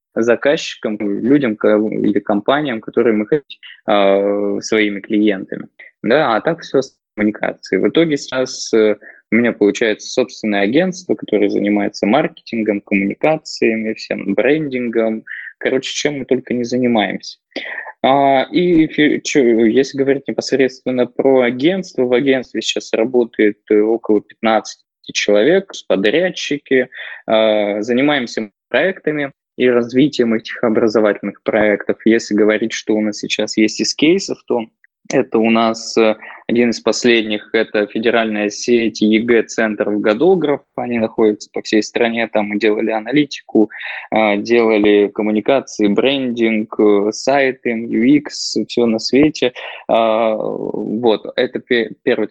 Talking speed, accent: 115 wpm, native